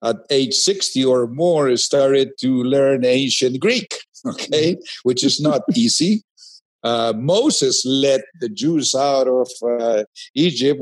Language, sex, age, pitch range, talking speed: English, male, 50-69, 110-140 Hz, 135 wpm